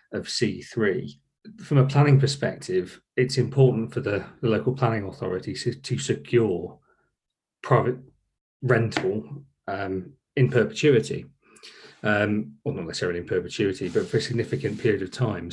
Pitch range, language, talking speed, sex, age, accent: 95-125 Hz, English, 130 wpm, male, 30-49, British